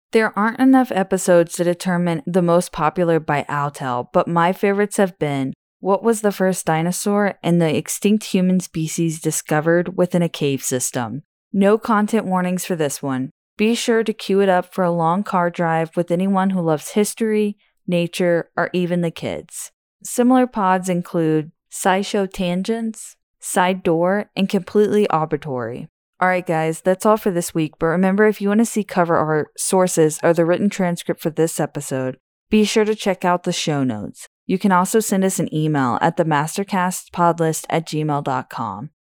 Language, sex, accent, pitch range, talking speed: English, female, American, 165-200 Hz, 170 wpm